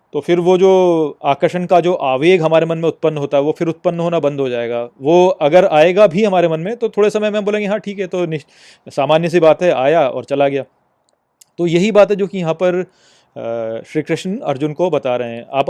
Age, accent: 30-49, native